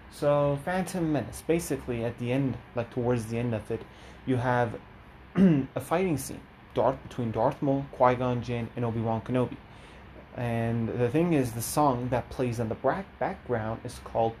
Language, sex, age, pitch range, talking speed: English, male, 30-49, 115-140 Hz, 160 wpm